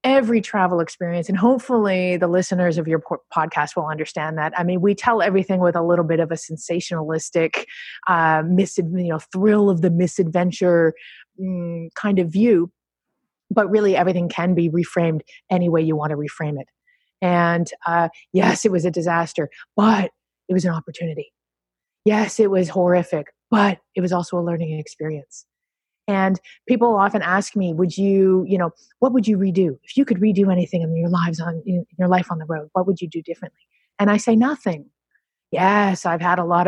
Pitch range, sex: 170-205 Hz, female